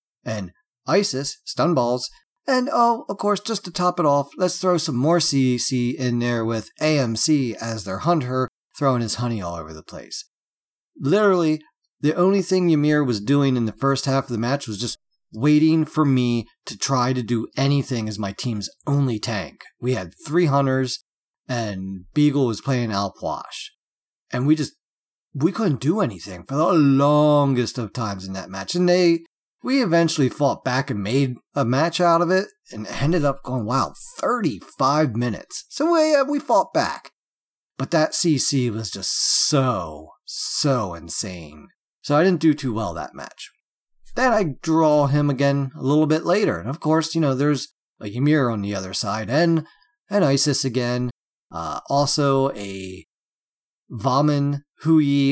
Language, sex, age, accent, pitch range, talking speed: English, male, 40-59, American, 115-155 Hz, 170 wpm